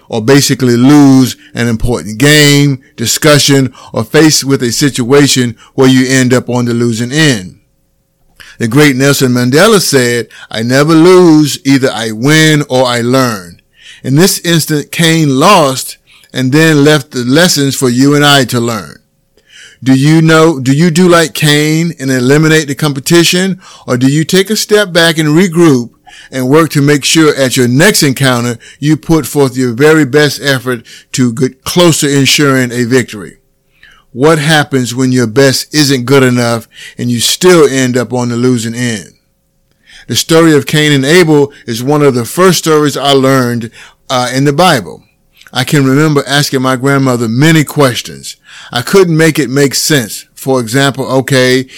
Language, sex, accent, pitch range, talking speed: English, male, American, 125-150 Hz, 170 wpm